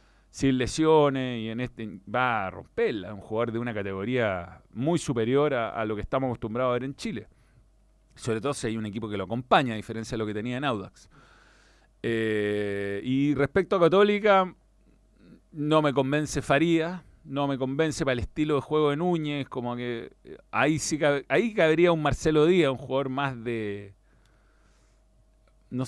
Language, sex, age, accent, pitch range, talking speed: Spanish, male, 40-59, Argentinian, 115-155 Hz, 175 wpm